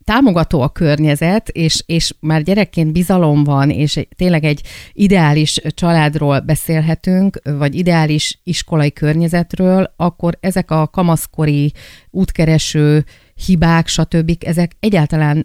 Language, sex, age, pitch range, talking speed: Hungarian, female, 30-49, 150-175 Hz, 110 wpm